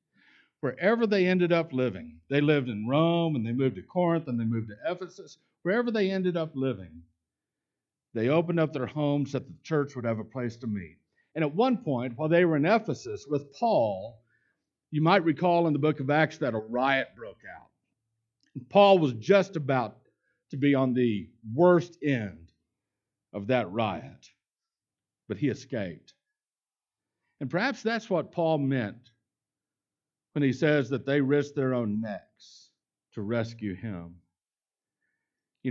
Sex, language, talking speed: male, English, 165 wpm